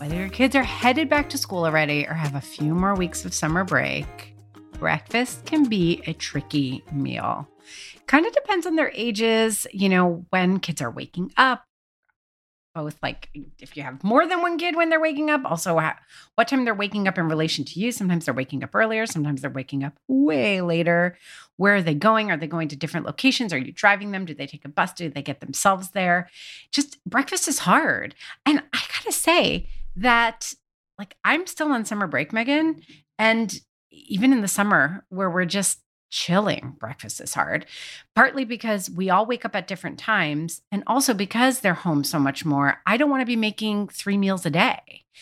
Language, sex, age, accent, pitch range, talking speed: English, female, 30-49, American, 150-230 Hz, 200 wpm